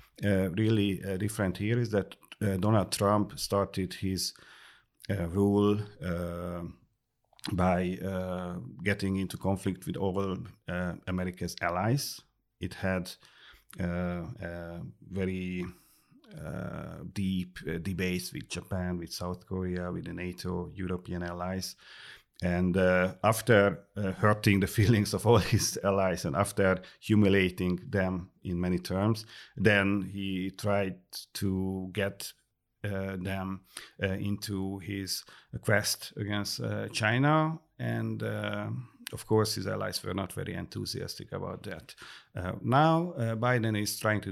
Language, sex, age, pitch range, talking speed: English, male, 40-59, 90-105 Hz, 125 wpm